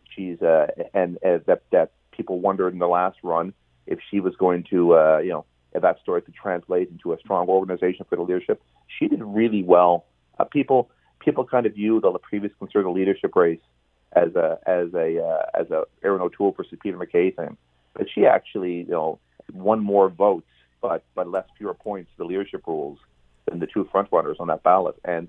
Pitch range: 85-105 Hz